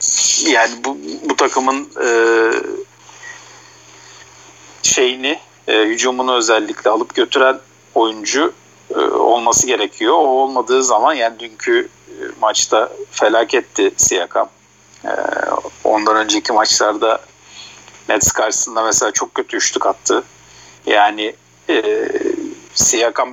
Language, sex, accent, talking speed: Turkish, male, native, 100 wpm